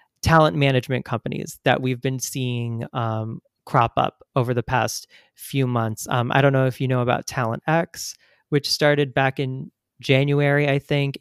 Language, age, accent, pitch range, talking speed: English, 30-49, American, 120-135 Hz, 170 wpm